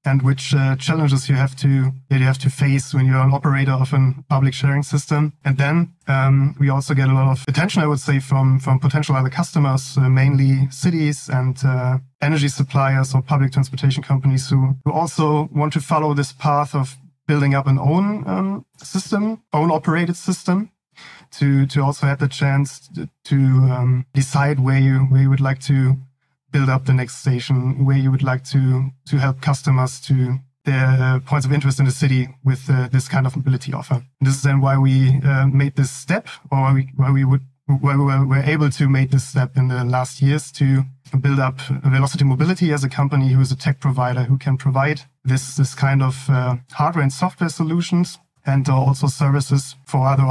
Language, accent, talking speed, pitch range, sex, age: English, German, 205 wpm, 135-145 Hz, male, 20-39